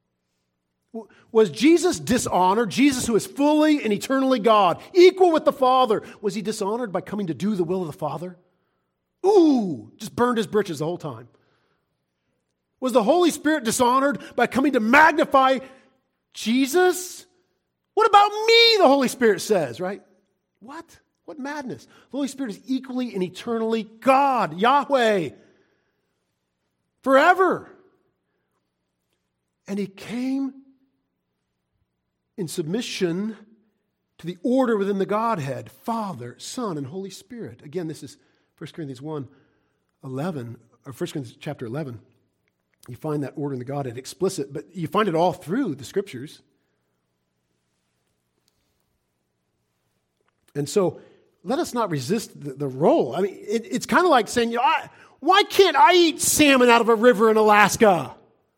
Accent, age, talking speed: American, 40-59, 140 wpm